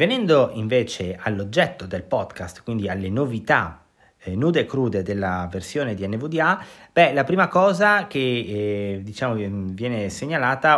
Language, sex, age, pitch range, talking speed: Italian, male, 30-49, 100-145 Hz, 135 wpm